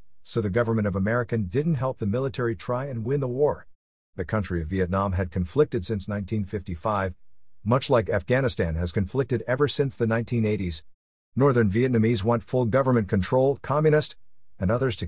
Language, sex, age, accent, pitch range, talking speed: English, male, 50-69, American, 95-125 Hz, 165 wpm